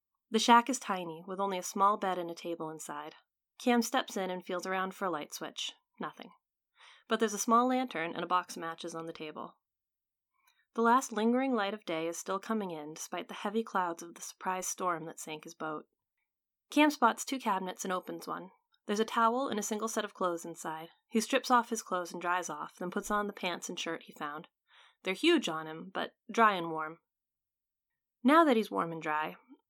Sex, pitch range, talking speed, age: female, 170-235 Hz, 215 wpm, 30-49